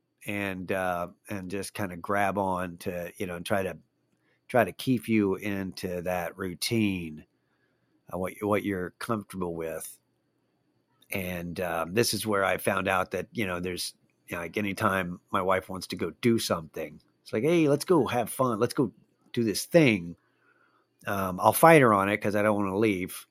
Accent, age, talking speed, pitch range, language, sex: American, 50-69, 195 wpm, 95-115 Hz, English, male